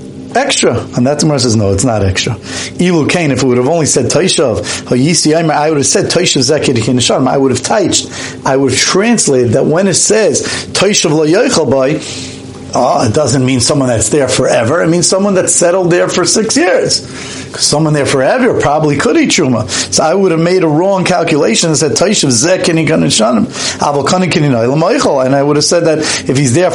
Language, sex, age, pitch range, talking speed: English, male, 40-59, 135-185 Hz, 185 wpm